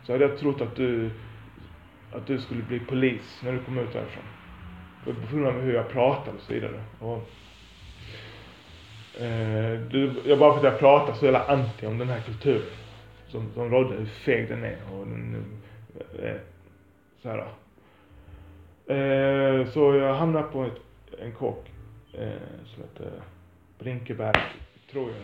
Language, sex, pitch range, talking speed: Swedish, male, 100-130 Hz, 160 wpm